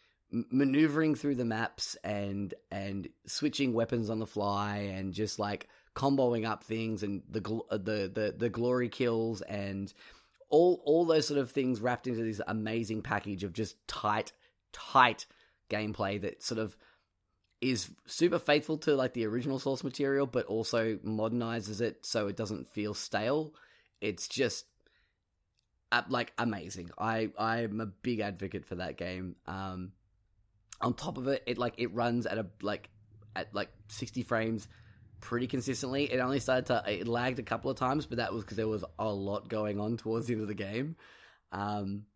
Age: 10-29